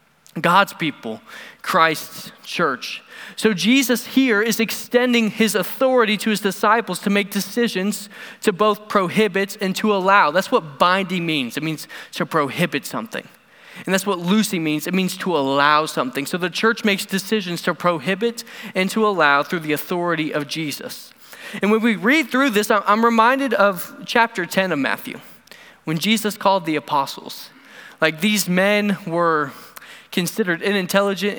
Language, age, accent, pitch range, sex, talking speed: English, 20-39, American, 170-220 Hz, male, 155 wpm